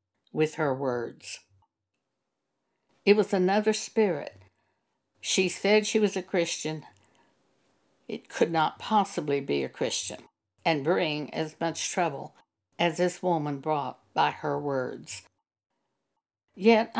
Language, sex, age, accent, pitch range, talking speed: English, female, 60-79, American, 145-225 Hz, 115 wpm